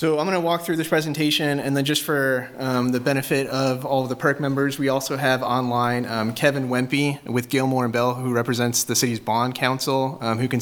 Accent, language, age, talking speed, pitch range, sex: American, English, 30-49, 230 wpm, 115-135 Hz, male